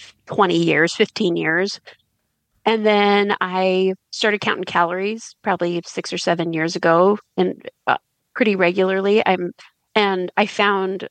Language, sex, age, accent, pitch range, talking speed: English, female, 30-49, American, 175-205 Hz, 130 wpm